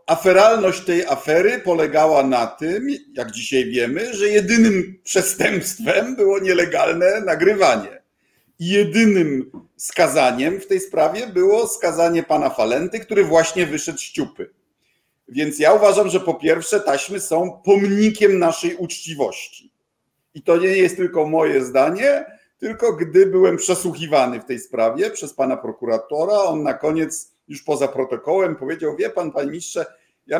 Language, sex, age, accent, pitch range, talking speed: Polish, male, 50-69, native, 140-200 Hz, 140 wpm